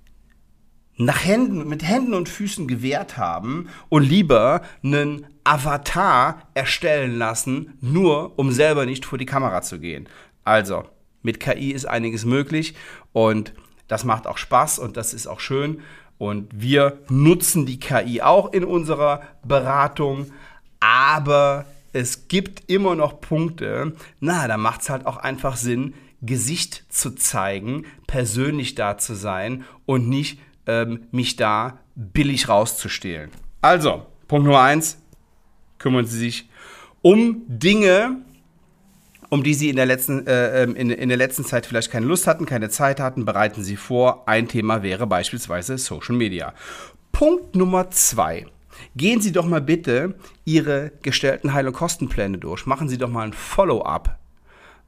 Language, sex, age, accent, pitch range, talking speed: German, male, 40-59, German, 120-155 Hz, 140 wpm